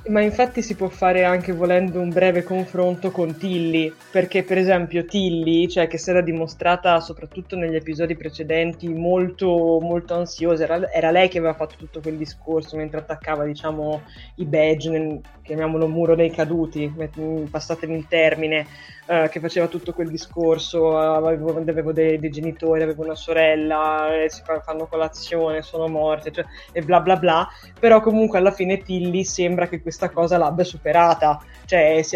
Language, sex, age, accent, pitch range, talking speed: Italian, female, 20-39, native, 155-175 Hz, 165 wpm